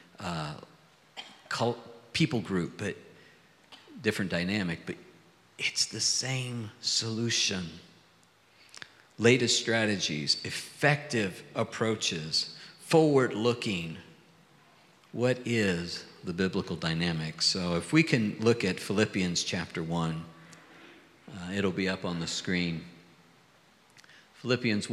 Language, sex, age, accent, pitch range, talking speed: English, male, 50-69, American, 95-125 Hz, 90 wpm